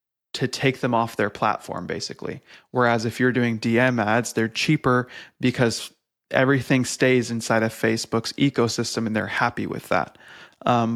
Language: English